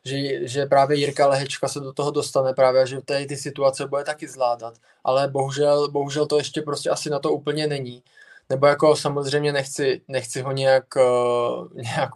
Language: Czech